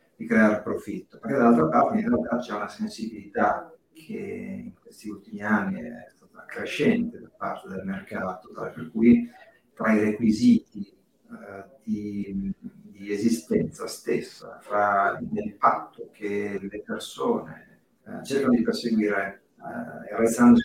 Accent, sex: native, male